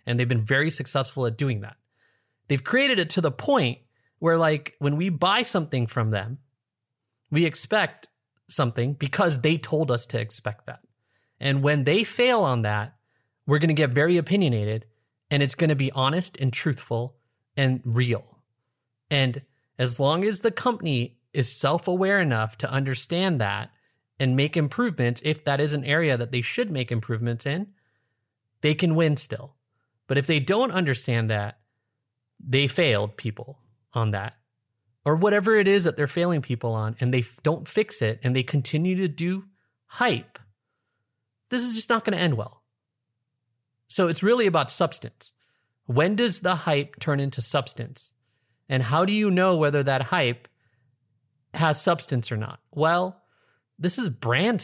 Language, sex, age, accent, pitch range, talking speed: English, male, 30-49, American, 120-165 Hz, 165 wpm